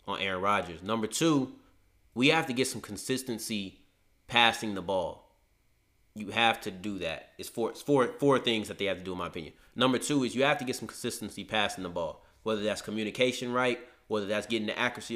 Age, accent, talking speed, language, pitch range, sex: 30-49, American, 205 wpm, English, 100-125 Hz, male